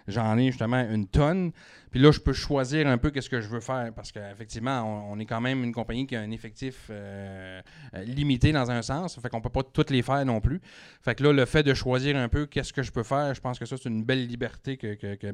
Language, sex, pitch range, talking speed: French, male, 115-140 Hz, 280 wpm